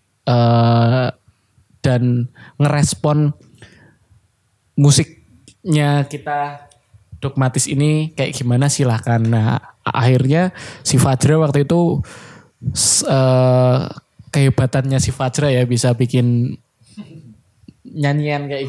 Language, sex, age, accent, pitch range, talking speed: Indonesian, male, 10-29, native, 125-155 Hz, 80 wpm